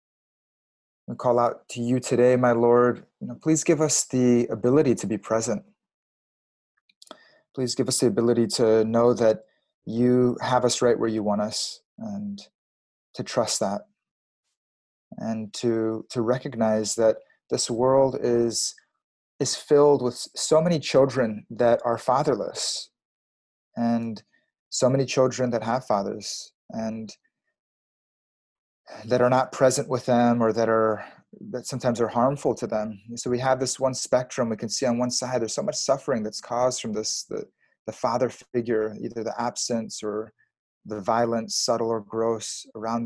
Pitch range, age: 110-130 Hz, 30-49